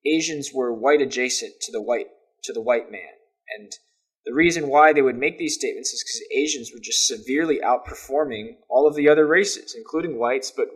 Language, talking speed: English, 185 wpm